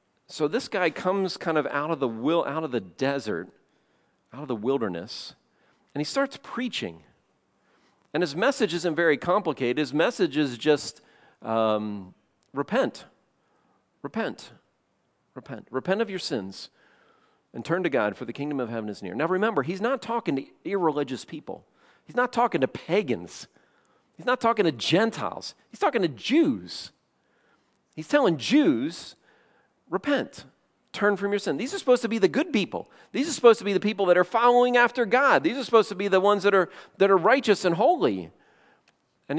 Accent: American